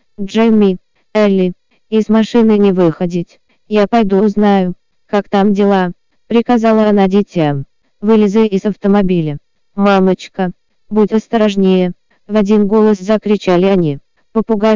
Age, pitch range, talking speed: 20-39, 185-215 Hz, 110 wpm